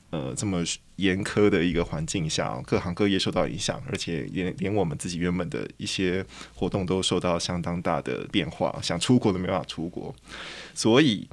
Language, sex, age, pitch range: Chinese, male, 20-39, 95-125 Hz